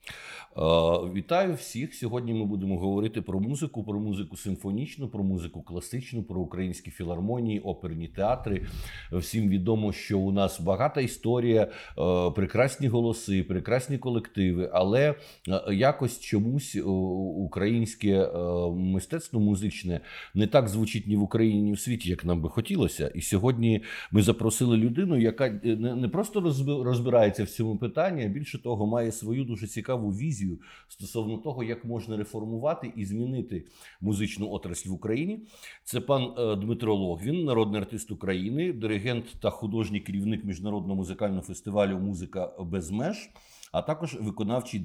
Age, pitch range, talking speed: 50-69, 95-120 Hz, 135 wpm